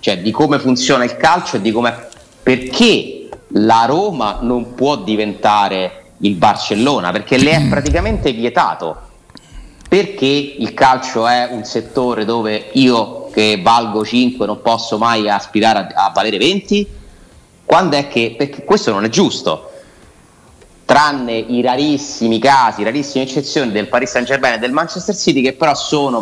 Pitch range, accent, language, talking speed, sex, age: 110-165 Hz, native, Italian, 155 wpm, male, 30-49